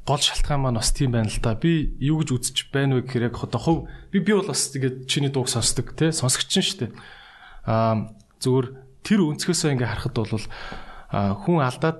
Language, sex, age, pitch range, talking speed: English, male, 20-39, 115-145 Hz, 190 wpm